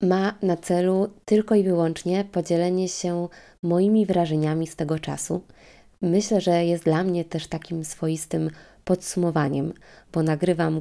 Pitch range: 160-190 Hz